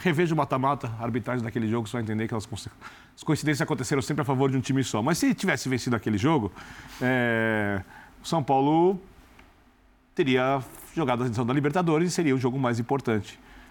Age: 40-59